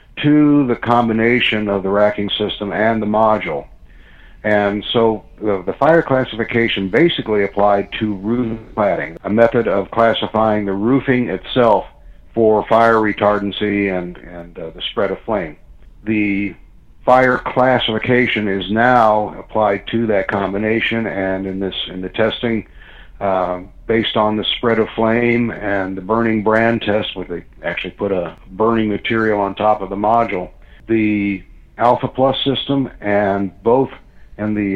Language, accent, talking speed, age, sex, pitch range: English, American, 145 wpm, 60-79, male, 100-115 Hz